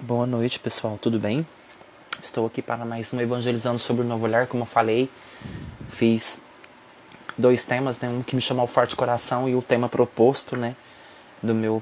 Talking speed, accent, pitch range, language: 190 wpm, Brazilian, 125-195 Hz, Portuguese